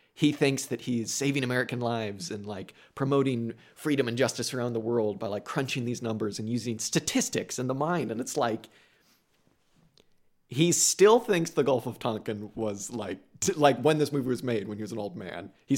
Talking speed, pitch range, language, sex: 200 wpm, 115-155 Hz, English, male